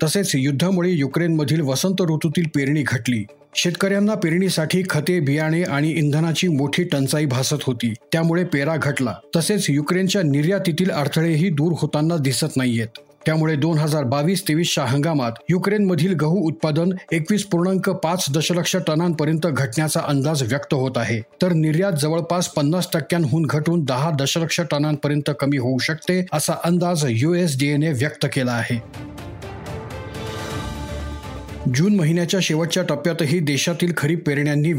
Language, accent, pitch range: Marathi, native, 145-175 Hz